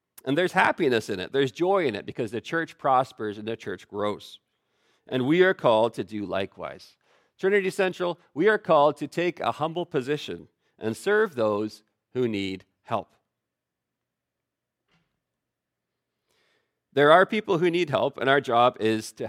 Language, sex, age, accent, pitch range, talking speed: English, male, 40-59, American, 120-170 Hz, 160 wpm